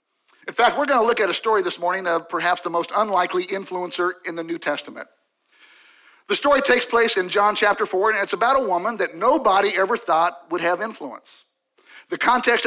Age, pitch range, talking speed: 50-69, 185-230 Hz, 205 wpm